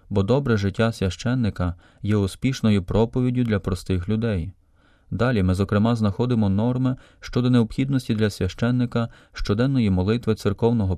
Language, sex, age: Ukrainian, male, 30-49